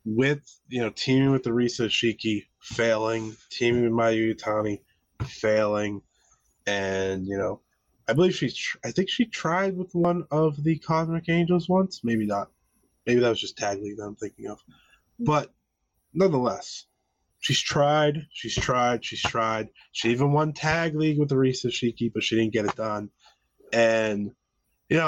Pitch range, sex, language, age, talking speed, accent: 110-155 Hz, male, English, 20-39, 160 wpm, American